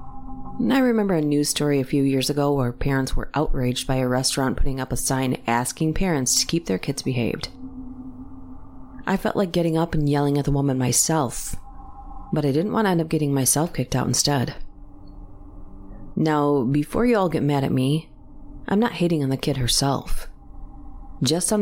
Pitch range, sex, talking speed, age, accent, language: 130-205 Hz, female, 185 wpm, 30-49, American, English